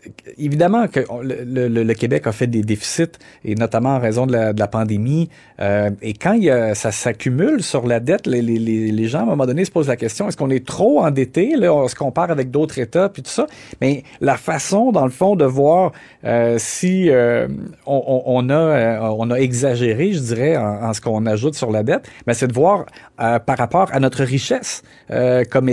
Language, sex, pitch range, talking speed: French, male, 120-155 Hz, 225 wpm